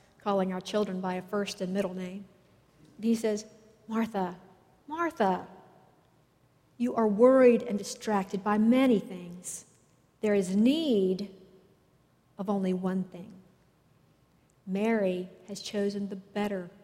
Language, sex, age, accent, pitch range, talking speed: English, female, 50-69, American, 195-250 Hz, 120 wpm